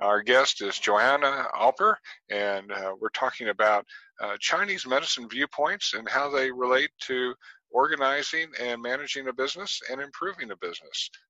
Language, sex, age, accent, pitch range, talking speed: English, male, 50-69, American, 110-145 Hz, 150 wpm